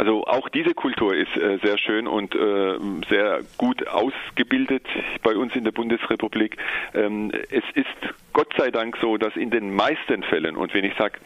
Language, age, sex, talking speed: German, 40-59, male, 165 wpm